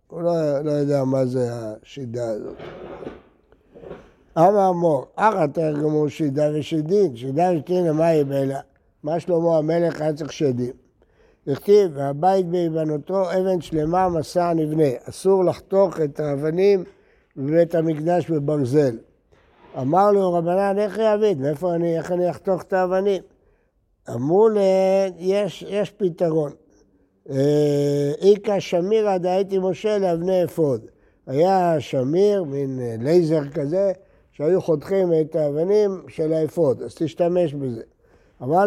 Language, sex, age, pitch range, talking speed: Hebrew, male, 60-79, 145-190 Hz, 110 wpm